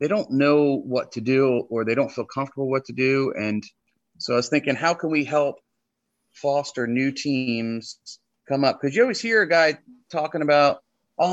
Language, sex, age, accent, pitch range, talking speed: English, male, 30-49, American, 115-140 Hz, 195 wpm